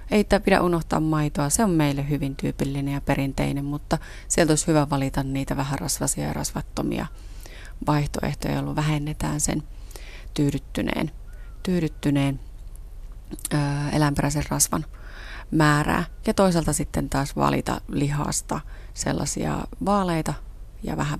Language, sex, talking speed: Finnish, female, 115 wpm